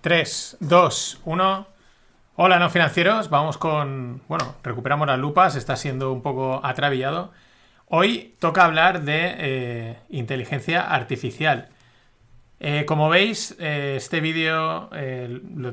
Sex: male